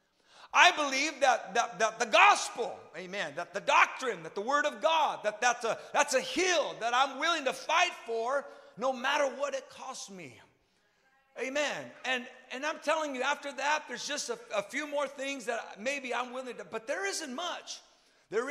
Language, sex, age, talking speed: English, male, 50-69, 190 wpm